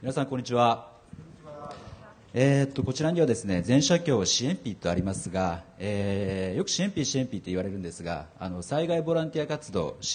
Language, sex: Japanese, male